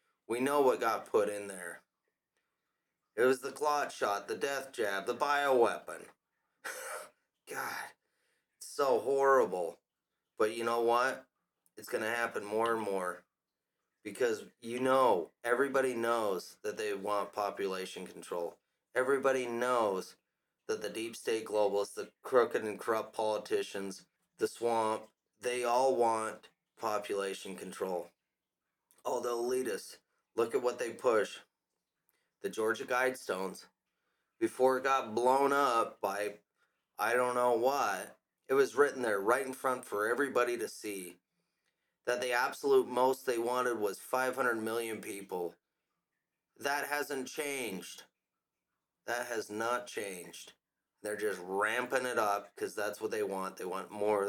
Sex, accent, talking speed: male, American, 135 wpm